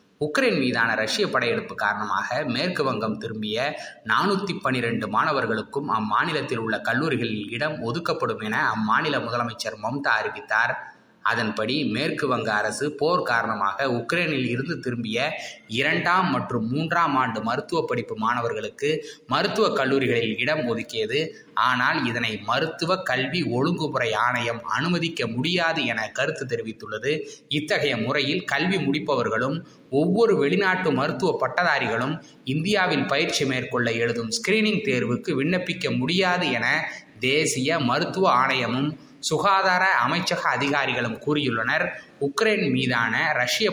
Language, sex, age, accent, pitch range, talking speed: Tamil, male, 20-39, native, 120-175 Hz, 110 wpm